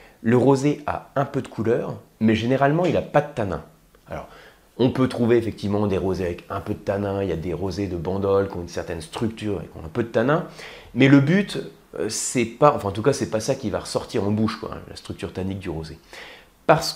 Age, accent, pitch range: 30-49, French, 100-155 Hz